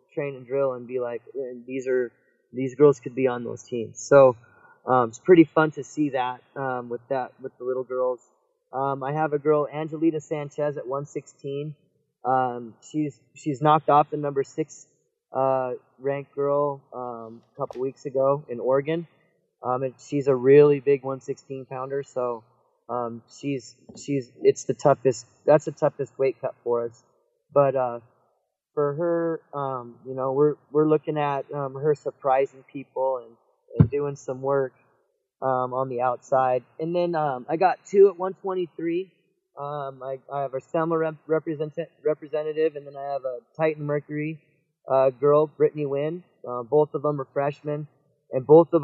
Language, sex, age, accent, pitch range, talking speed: English, male, 20-39, American, 130-150 Hz, 170 wpm